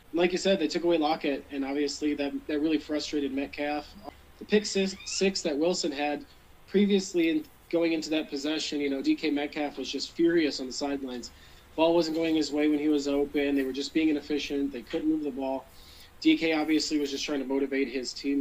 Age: 20-39